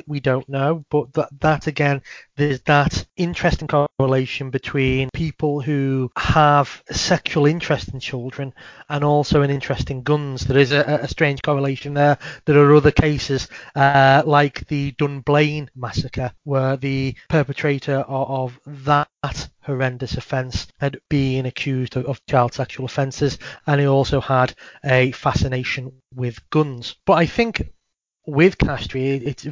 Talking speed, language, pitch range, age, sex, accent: 140 wpm, English, 130-150 Hz, 30-49, male, British